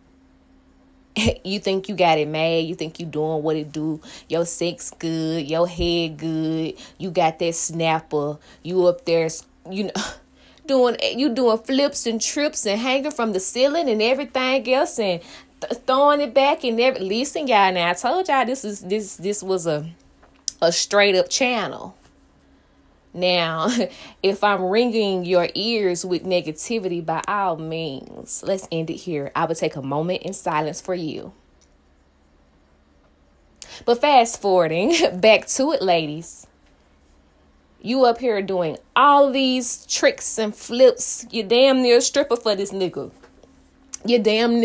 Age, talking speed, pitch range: 20-39, 155 wpm, 155-235 Hz